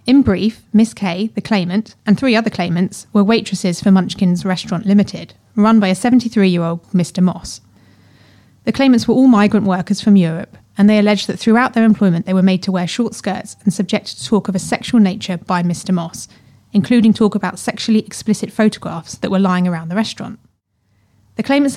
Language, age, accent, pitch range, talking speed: English, 30-49, British, 180-220 Hz, 190 wpm